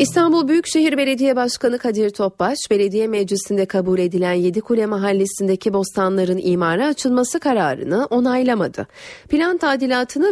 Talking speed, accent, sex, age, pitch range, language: 115 wpm, native, female, 30-49, 185-260 Hz, Turkish